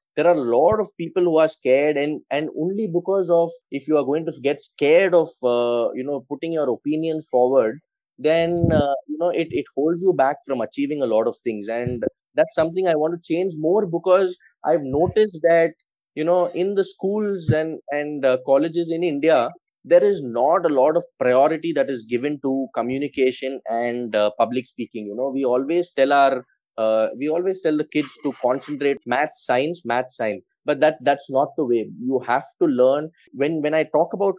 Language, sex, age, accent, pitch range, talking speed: English, male, 20-39, Indian, 130-170 Hz, 200 wpm